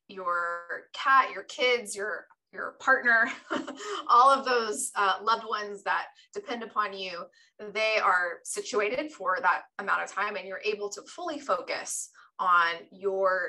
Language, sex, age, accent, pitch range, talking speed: English, female, 20-39, American, 185-235 Hz, 145 wpm